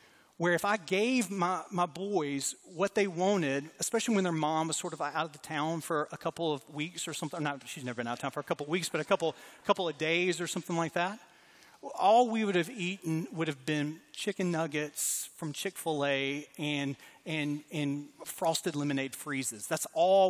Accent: American